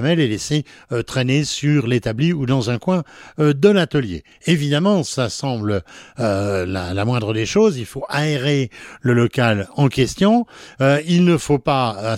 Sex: male